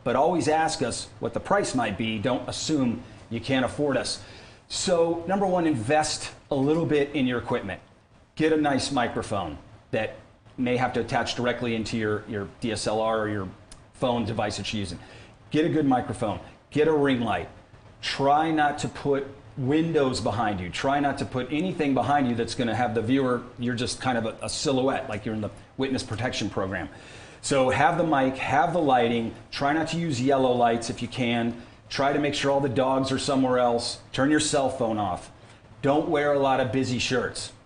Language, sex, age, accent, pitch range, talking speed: English, male, 40-59, American, 115-145 Hz, 200 wpm